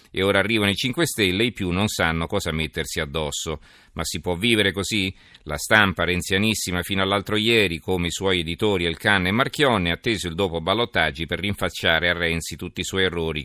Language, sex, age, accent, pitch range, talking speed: Italian, male, 40-59, native, 80-100 Hz, 200 wpm